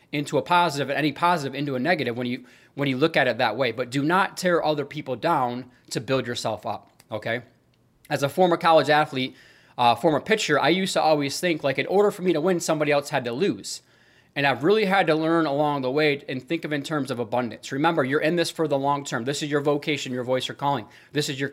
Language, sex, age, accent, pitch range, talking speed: English, male, 20-39, American, 135-170 Hz, 250 wpm